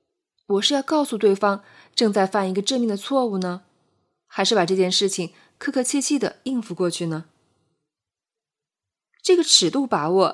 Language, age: Chinese, 20-39